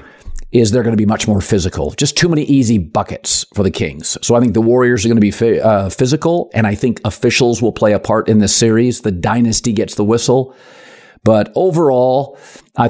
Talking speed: 210 wpm